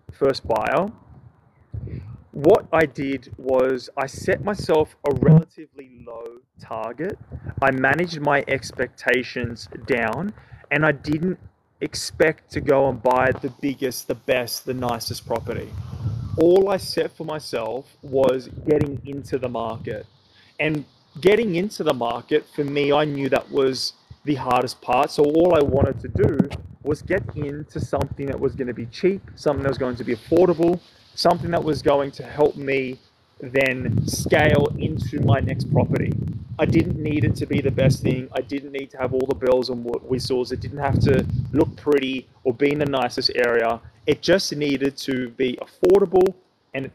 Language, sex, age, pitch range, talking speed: English, male, 20-39, 125-150 Hz, 165 wpm